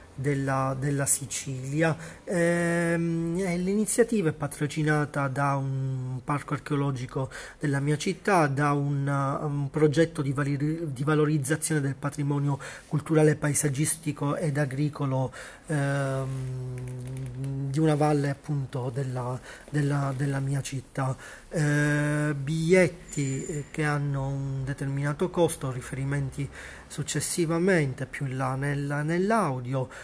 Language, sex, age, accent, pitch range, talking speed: Italian, male, 30-49, native, 135-155 Hz, 100 wpm